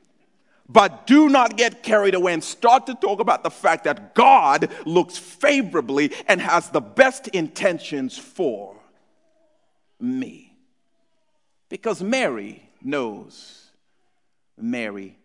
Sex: male